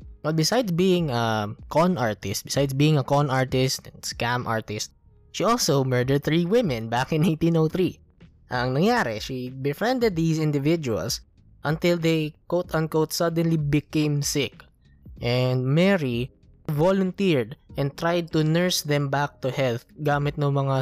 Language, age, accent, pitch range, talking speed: Filipino, 20-39, native, 115-155 Hz, 140 wpm